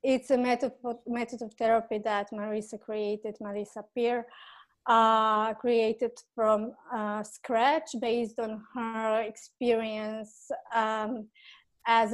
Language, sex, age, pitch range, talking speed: English, female, 20-39, 225-255 Hz, 105 wpm